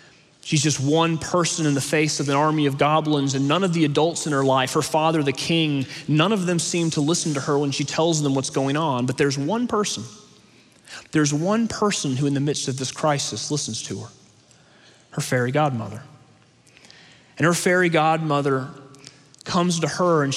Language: English